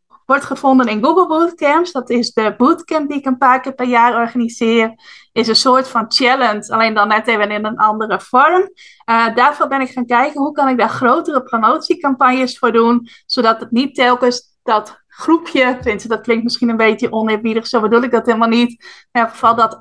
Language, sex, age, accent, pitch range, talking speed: Dutch, female, 20-39, Dutch, 225-265 Hz, 195 wpm